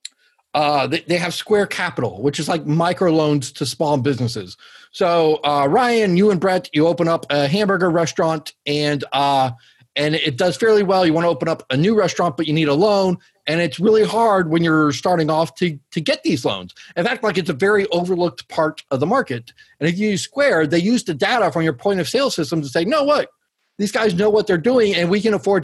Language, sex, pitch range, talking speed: English, male, 150-200 Hz, 230 wpm